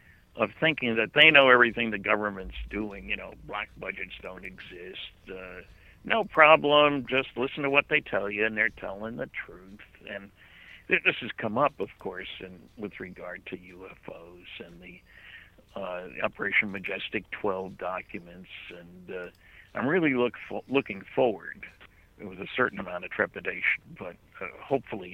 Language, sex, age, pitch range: English, male, 60-79, 95-125 Hz